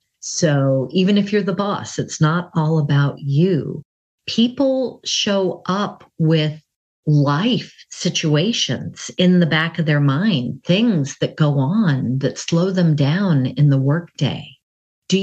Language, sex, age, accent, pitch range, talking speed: English, female, 50-69, American, 140-175 Hz, 140 wpm